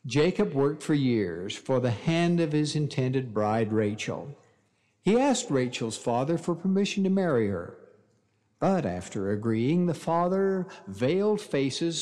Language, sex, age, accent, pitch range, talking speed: English, male, 60-79, American, 120-195 Hz, 140 wpm